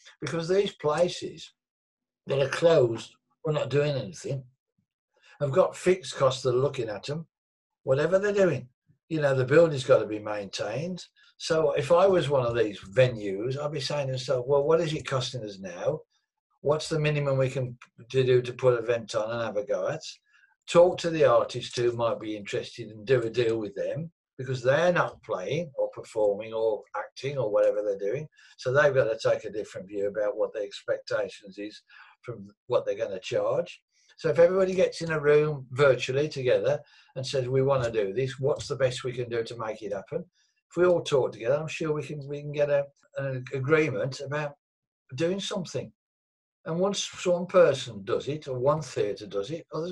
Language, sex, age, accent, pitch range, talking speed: English, male, 60-79, British, 130-195 Hz, 200 wpm